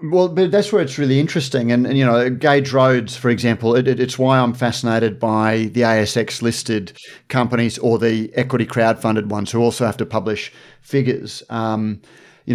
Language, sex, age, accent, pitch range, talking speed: English, male, 30-49, Australian, 115-130 Hz, 185 wpm